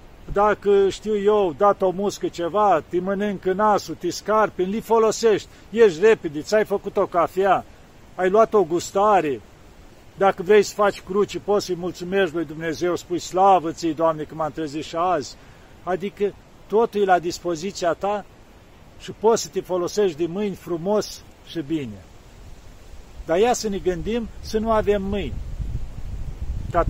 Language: Romanian